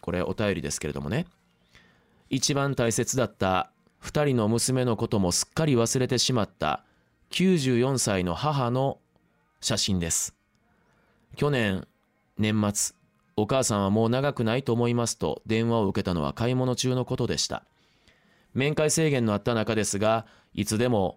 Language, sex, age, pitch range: Japanese, male, 20-39, 100-135 Hz